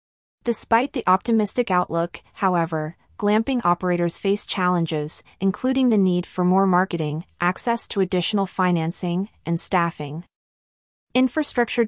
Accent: American